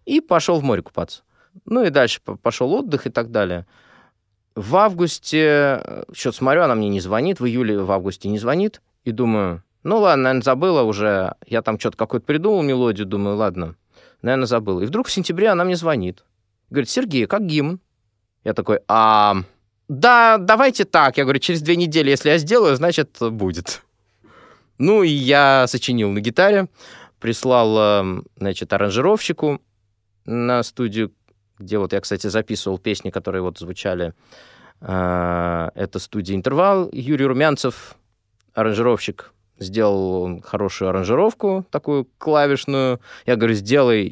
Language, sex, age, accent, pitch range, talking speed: Russian, male, 20-39, native, 100-145 Hz, 145 wpm